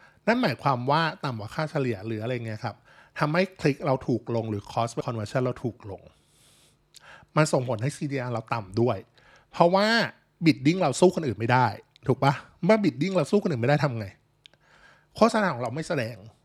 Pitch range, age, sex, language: 120-155 Hz, 20-39, male, Thai